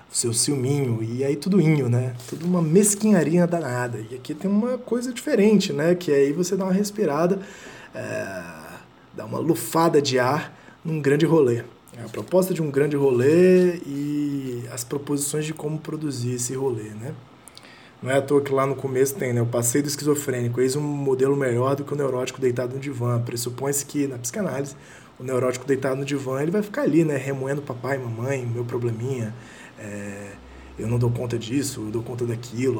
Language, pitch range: Portuguese, 120-155 Hz